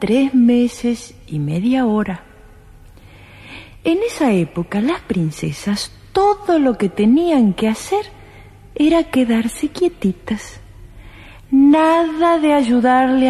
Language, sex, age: Spanish, female, 40-59